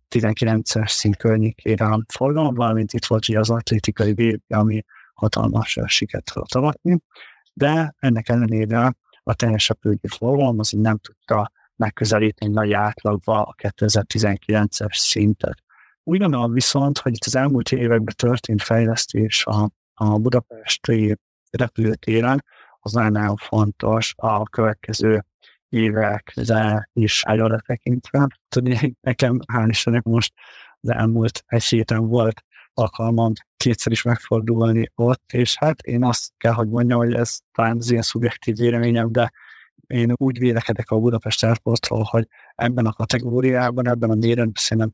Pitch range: 110-120 Hz